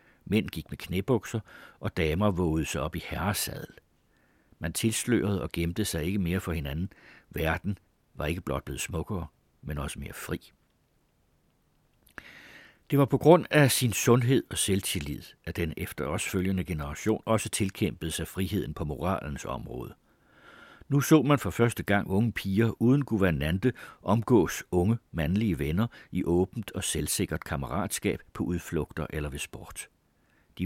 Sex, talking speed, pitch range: male, 150 wpm, 80-110 Hz